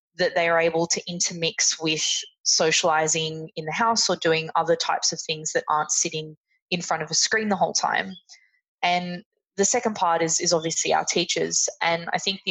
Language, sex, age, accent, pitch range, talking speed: English, female, 20-39, Australian, 165-185 Hz, 195 wpm